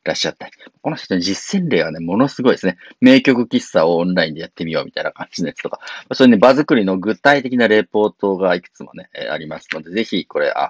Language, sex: Japanese, male